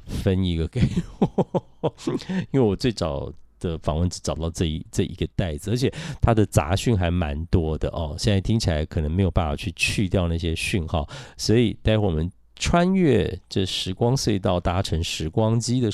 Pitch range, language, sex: 85-115 Hz, Chinese, male